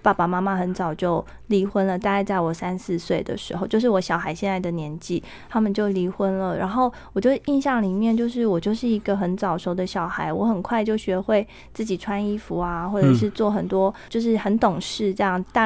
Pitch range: 190-230 Hz